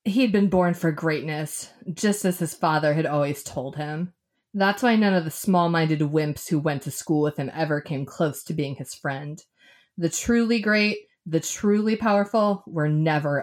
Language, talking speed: English, 185 wpm